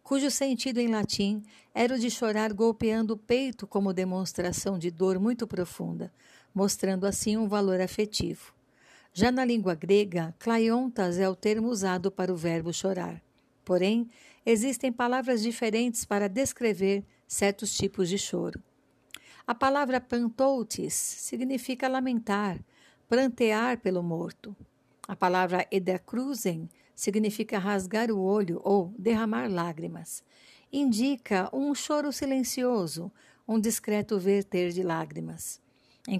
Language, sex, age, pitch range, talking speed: Portuguese, female, 60-79, 185-235 Hz, 120 wpm